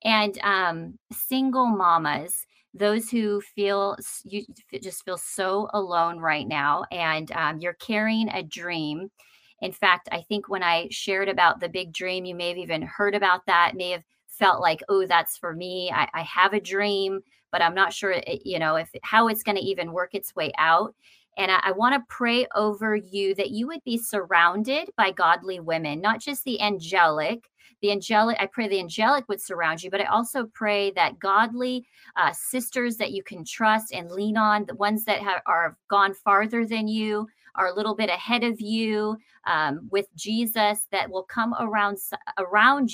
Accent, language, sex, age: American, English, female, 40-59